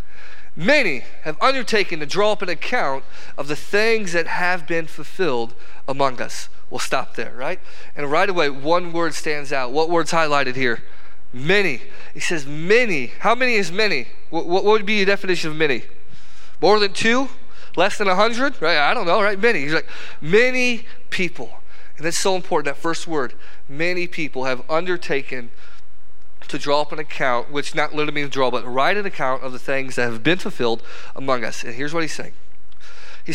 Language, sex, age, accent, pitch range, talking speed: English, male, 30-49, American, 135-180 Hz, 185 wpm